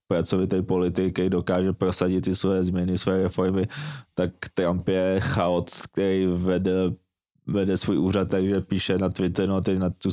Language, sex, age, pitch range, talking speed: Czech, male, 20-39, 95-100 Hz, 160 wpm